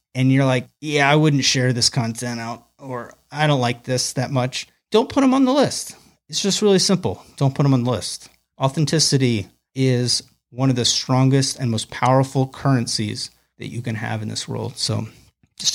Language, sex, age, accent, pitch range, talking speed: English, male, 30-49, American, 115-140 Hz, 200 wpm